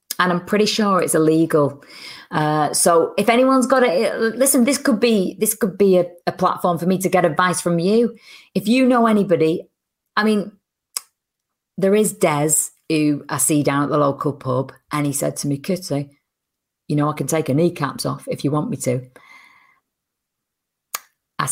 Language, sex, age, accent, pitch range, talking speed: English, female, 40-59, British, 160-230 Hz, 185 wpm